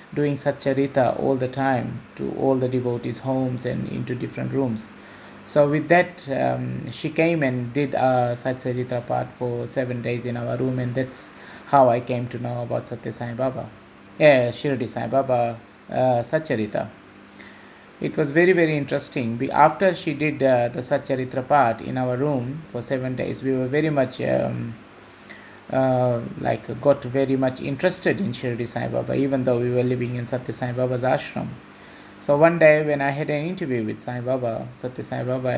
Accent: Indian